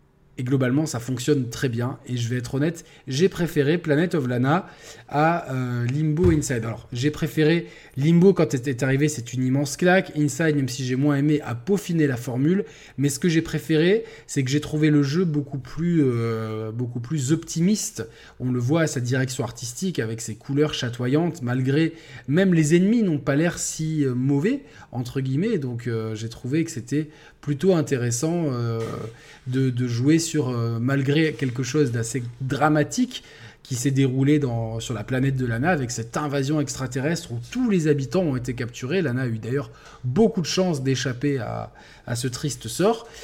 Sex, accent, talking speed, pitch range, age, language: male, French, 185 wpm, 125-160 Hz, 20-39, French